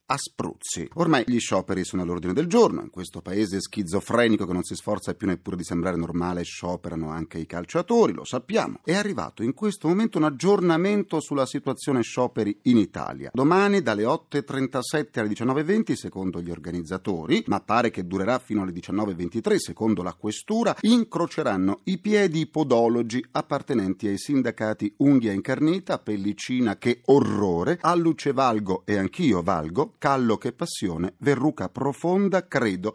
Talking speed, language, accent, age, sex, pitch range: 150 wpm, Italian, native, 40-59, male, 100-155 Hz